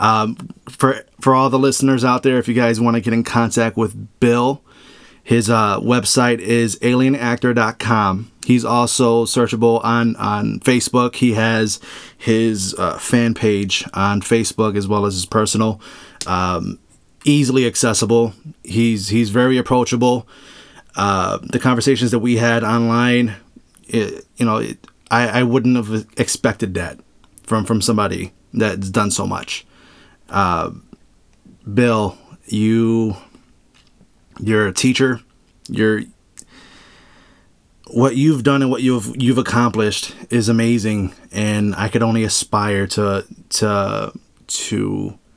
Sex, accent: male, American